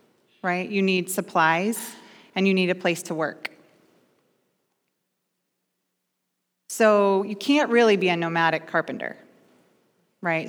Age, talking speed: 30-49, 115 wpm